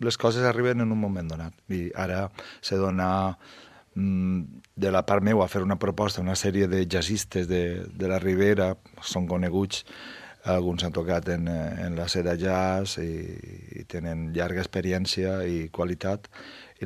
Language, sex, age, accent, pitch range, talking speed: Spanish, male, 40-59, Spanish, 90-105 Hz, 160 wpm